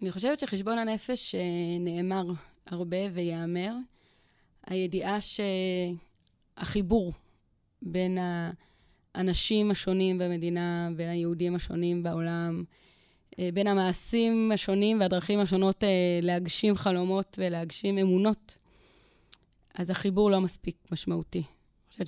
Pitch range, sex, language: 175-205 Hz, female, Hebrew